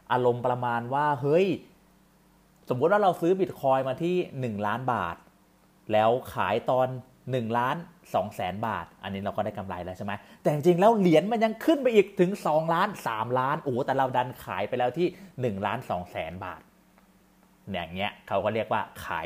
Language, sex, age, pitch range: Thai, male, 30-49, 105-160 Hz